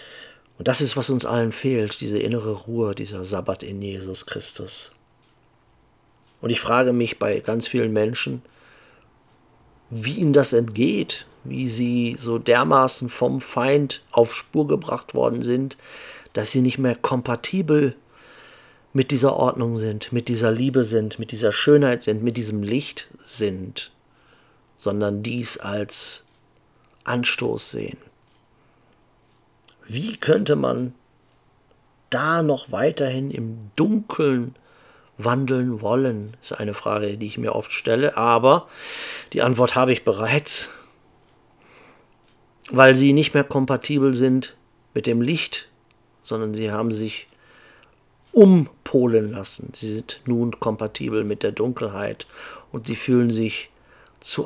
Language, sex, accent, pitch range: German, male, German, 110-135 Hz